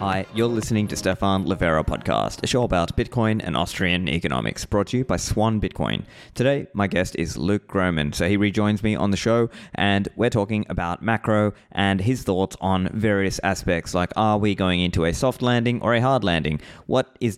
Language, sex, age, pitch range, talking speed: English, male, 20-39, 95-115 Hz, 200 wpm